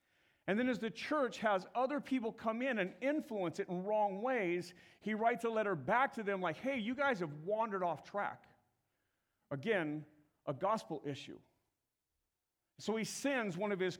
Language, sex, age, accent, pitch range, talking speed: English, male, 50-69, American, 155-215 Hz, 175 wpm